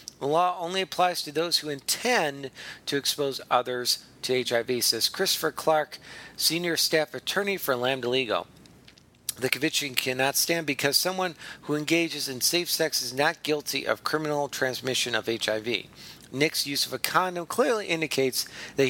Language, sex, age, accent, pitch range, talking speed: English, male, 40-59, American, 120-155 Hz, 155 wpm